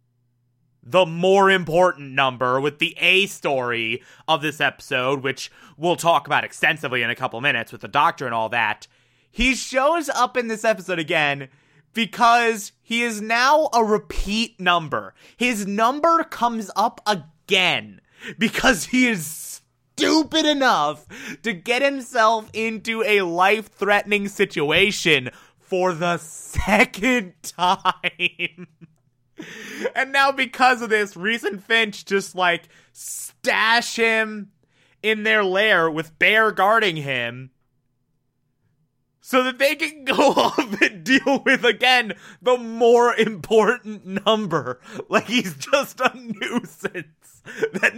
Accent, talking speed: American, 125 wpm